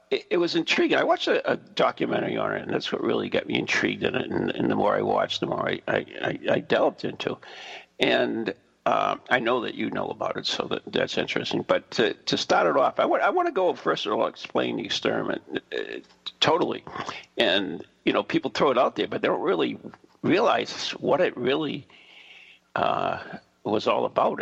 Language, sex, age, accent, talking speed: English, male, 50-69, American, 210 wpm